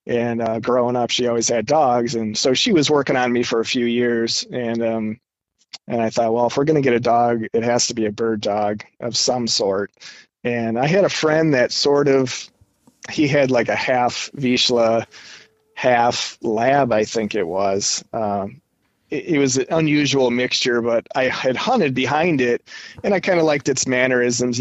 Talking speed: 200 wpm